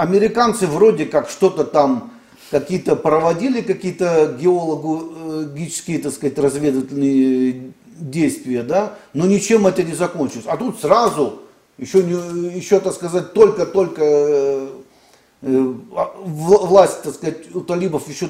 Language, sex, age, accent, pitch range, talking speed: Russian, male, 40-59, native, 135-185 Hz, 110 wpm